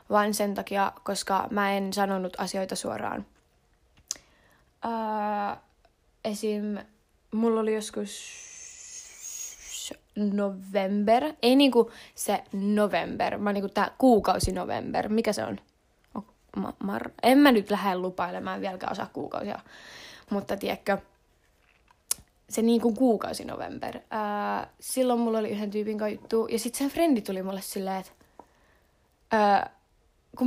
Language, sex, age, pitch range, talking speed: Finnish, female, 20-39, 200-260 Hz, 115 wpm